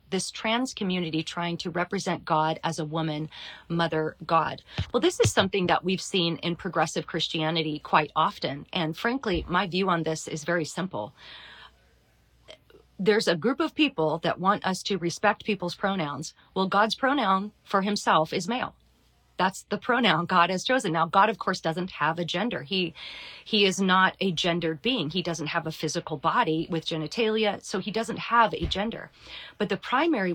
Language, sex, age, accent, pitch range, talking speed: English, female, 40-59, American, 160-200 Hz, 180 wpm